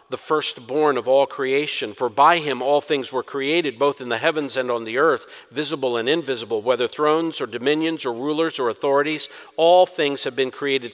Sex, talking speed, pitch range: male, 195 wpm, 145-220 Hz